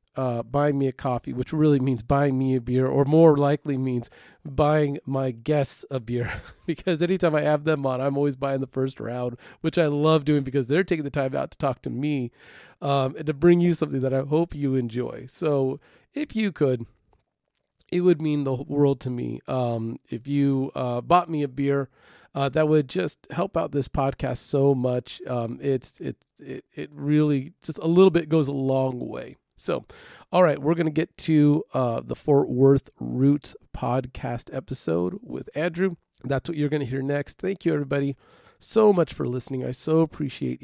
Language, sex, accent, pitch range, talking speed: English, male, American, 130-150 Hz, 200 wpm